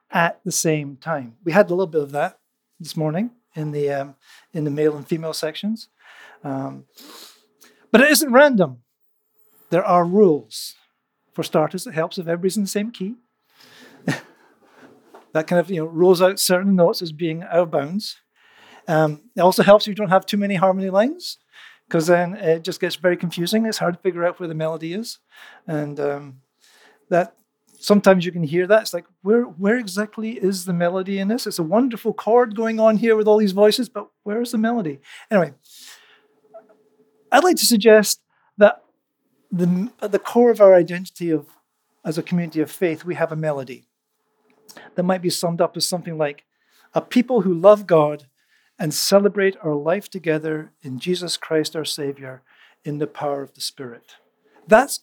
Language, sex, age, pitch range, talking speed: English, male, 50-69, 160-215 Hz, 185 wpm